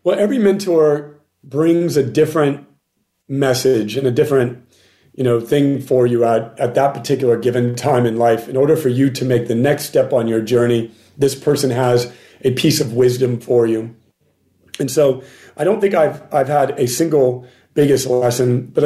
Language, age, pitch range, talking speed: English, 40-59, 125-155 Hz, 180 wpm